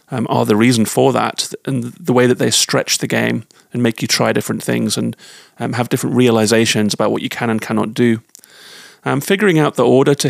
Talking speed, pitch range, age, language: 220 wpm, 115-150 Hz, 30-49, English